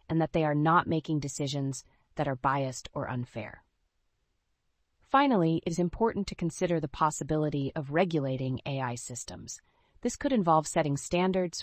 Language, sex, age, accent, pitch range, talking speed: English, female, 30-49, American, 135-180 Hz, 150 wpm